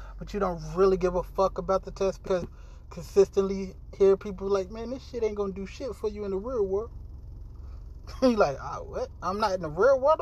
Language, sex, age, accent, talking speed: English, male, 20-39, American, 230 wpm